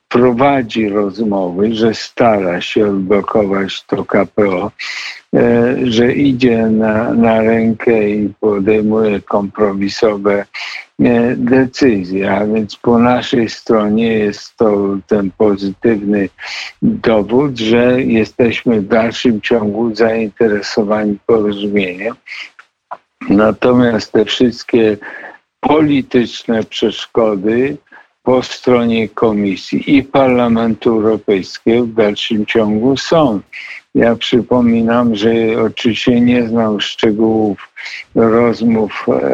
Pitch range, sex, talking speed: 105-120 Hz, male, 85 wpm